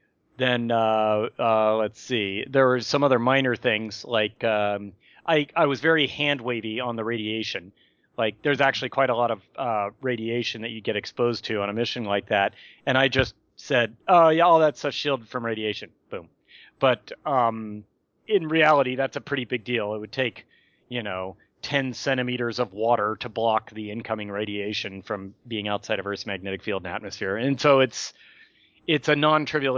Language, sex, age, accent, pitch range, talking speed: English, male, 30-49, American, 110-135 Hz, 185 wpm